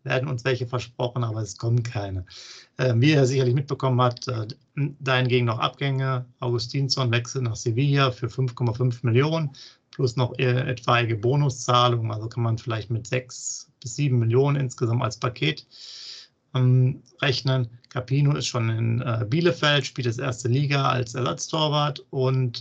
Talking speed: 150 wpm